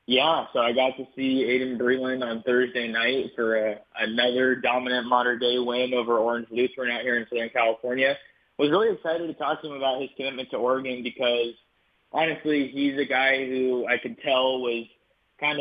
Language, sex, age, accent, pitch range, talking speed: English, male, 20-39, American, 125-140 Hz, 190 wpm